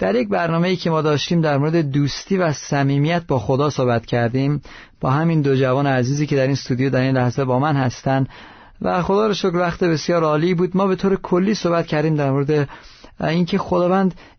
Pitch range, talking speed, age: 140-175 Hz, 195 wpm, 40-59